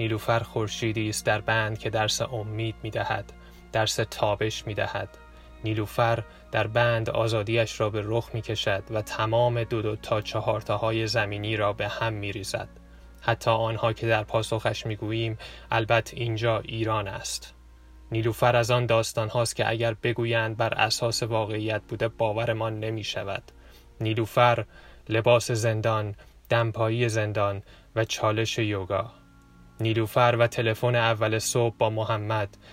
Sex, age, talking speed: male, 10-29, 130 wpm